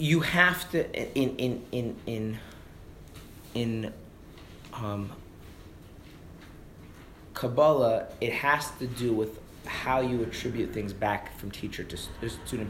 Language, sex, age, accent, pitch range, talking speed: English, male, 30-49, American, 90-120 Hz, 115 wpm